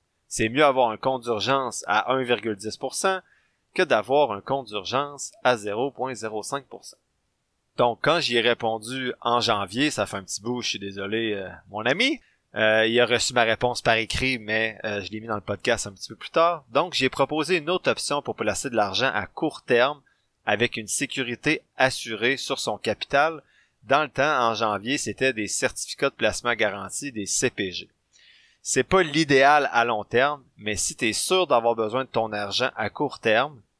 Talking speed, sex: 190 wpm, male